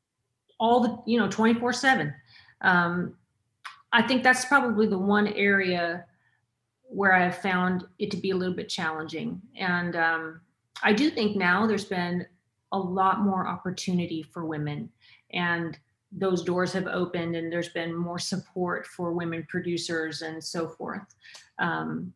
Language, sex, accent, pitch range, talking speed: English, female, American, 165-210 Hz, 150 wpm